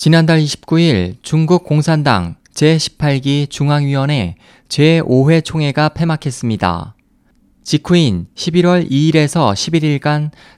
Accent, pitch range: native, 130-165 Hz